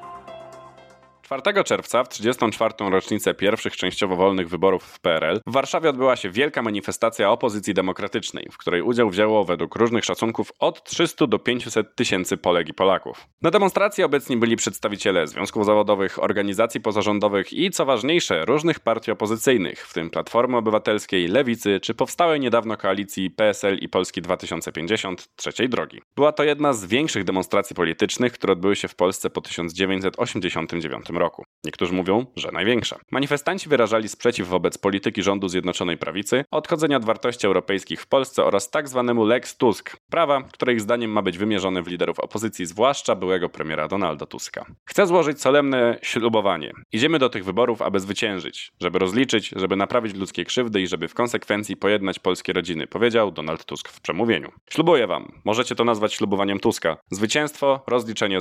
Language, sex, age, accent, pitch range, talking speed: Polish, male, 20-39, native, 95-120 Hz, 160 wpm